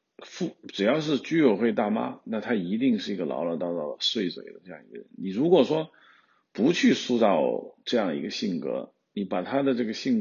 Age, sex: 50-69, male